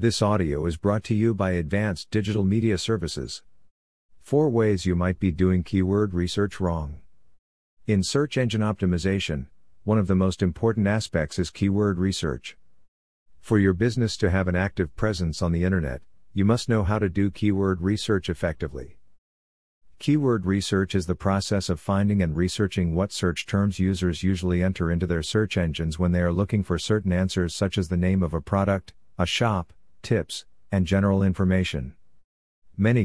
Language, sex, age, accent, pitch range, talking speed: English, male, 50-69, American, 85-100 Hz, 170 wpm